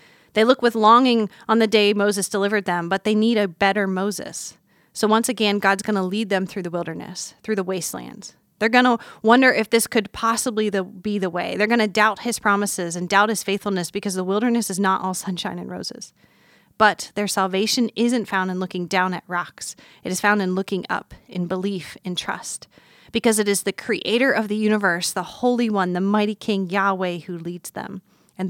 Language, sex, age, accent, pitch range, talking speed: English, female, 30-49, American, 180-215 Hz, 210 wpm